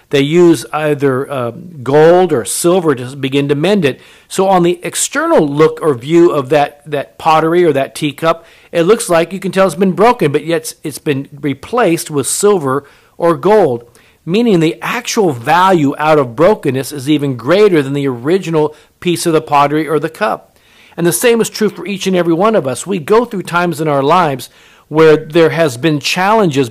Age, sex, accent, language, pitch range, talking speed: 50-69, male, American, English, 140-175 Hz, 200 wpm